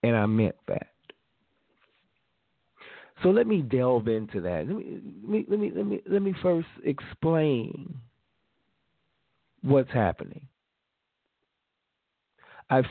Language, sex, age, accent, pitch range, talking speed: English, male, 40-59, American, 105-130 Hz, 115 wpm